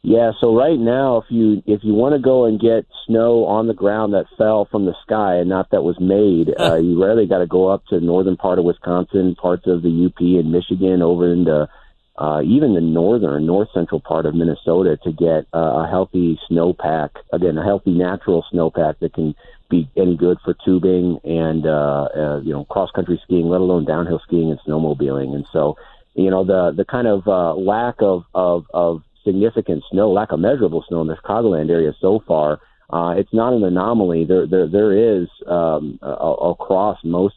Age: 40-59